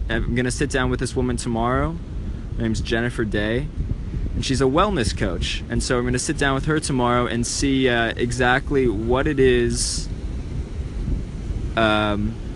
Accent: American